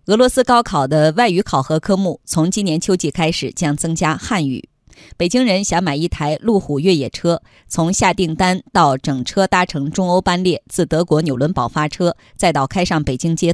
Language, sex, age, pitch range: Chinese, female, 20-39, 145-200 Hz